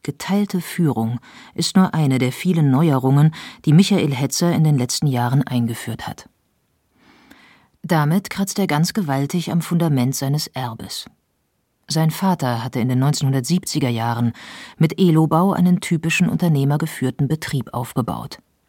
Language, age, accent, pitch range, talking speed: German, 40-59, German, 125-175 Hz, 130 wpm